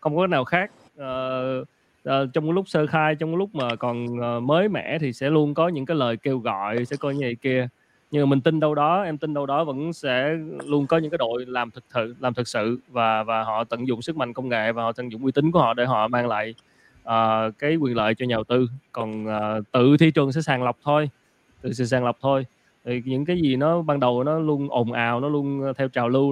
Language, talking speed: Vietnamese, 255 wpm